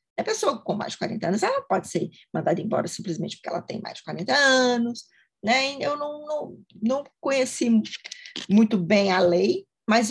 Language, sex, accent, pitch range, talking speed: Portuguese, female, Brazilian, 185-235 Hz, 180 wpm